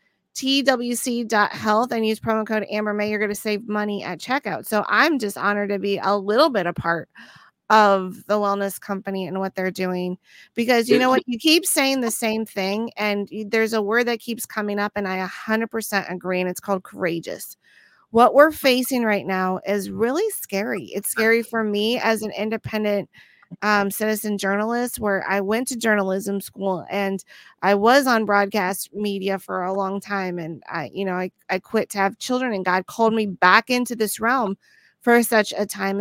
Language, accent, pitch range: English, American, 195-230 Hz